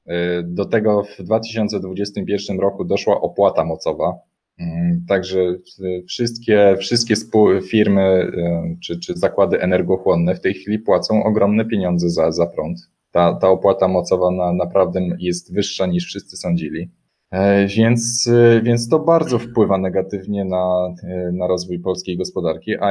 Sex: male